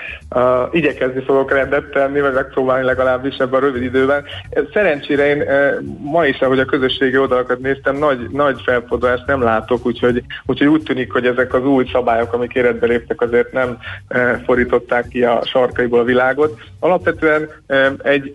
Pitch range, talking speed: 125-145 Hz, 150 wpm